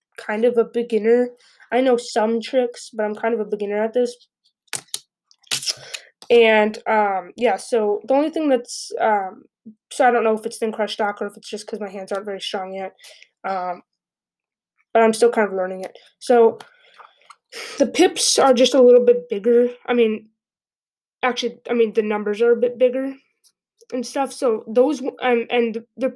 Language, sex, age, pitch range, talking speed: English, female, 20-39, 210-240 Hz, 185 wpm